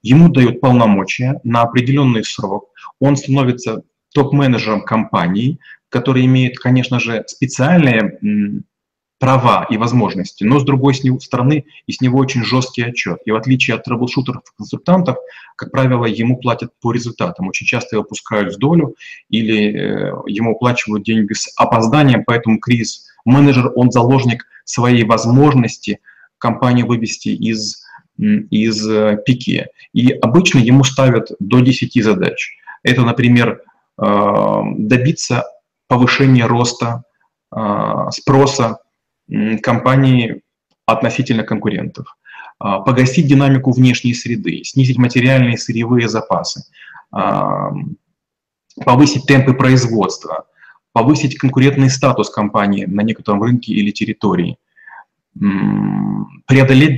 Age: 30-49